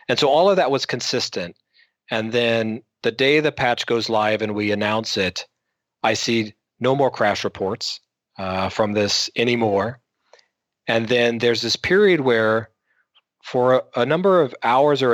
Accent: American